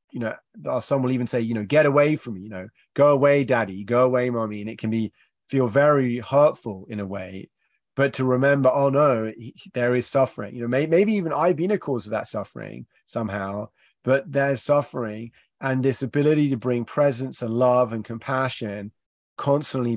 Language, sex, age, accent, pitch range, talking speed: English, male, 30-49, British, 115-140 Hz, 190 wpm